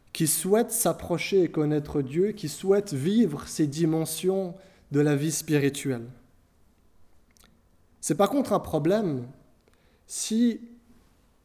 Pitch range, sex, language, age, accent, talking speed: 130-175 Hz, male, French, 20-39, French, 110 wpm